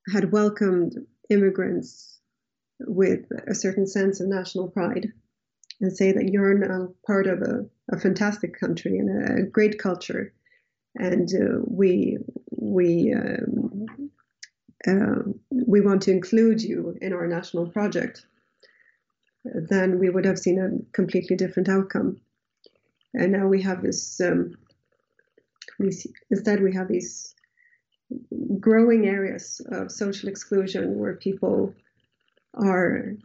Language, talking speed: English, 125 wpm